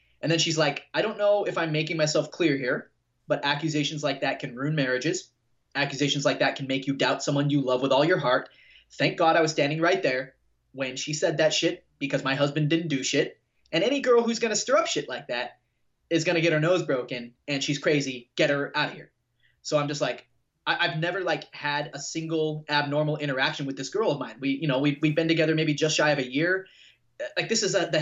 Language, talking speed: English, 250 wpm